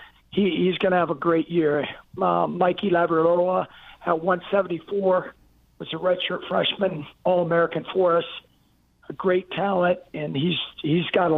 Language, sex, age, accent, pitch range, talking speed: English, male, 50-69, American, 170-185 Hz, 150 wpm